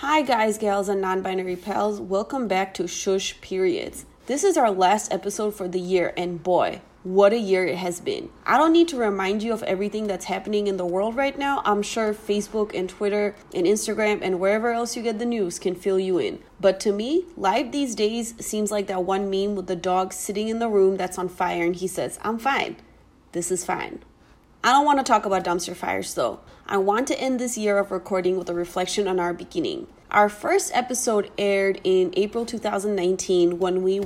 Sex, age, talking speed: female, 30-49, 210 wpm